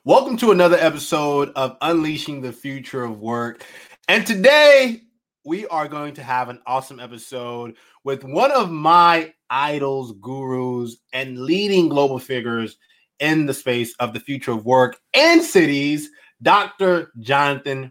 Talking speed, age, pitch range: 140 wpm, 20-39, 130-185 Hz